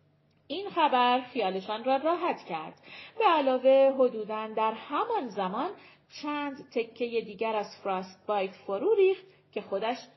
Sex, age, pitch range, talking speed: female, 40-59, 225-310 Hz, 130 wpm